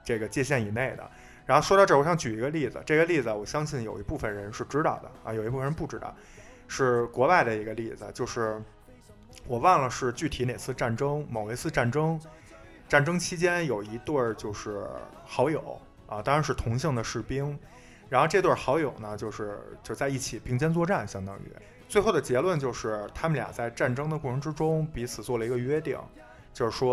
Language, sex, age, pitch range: Chinese, male, 20-39, 110-145 Hz